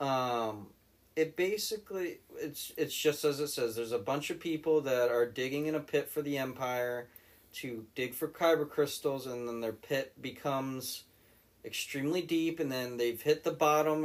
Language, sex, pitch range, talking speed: English, male, 110-150 Hz, 175 wpm